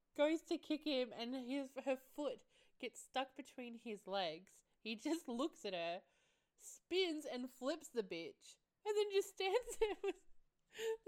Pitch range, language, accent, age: 190-295 Hz, English, Australian, 20-39